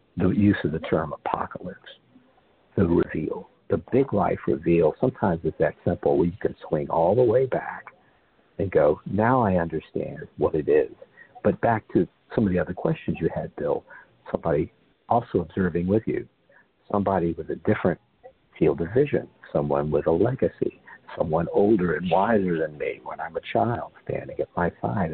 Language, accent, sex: English, American, male